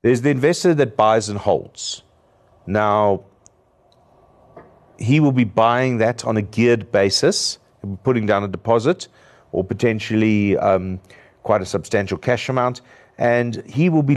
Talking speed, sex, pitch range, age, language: 140 wpm, male, 100-130 Hz, 50-69, English